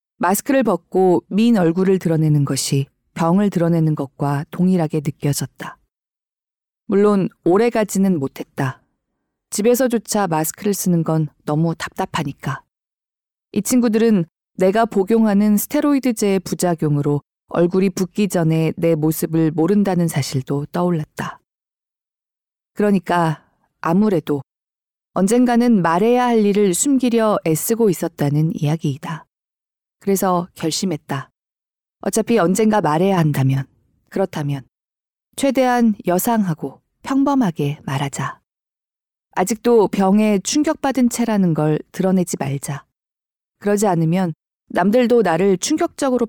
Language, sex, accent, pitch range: Korean, female, native, 160-215 Hz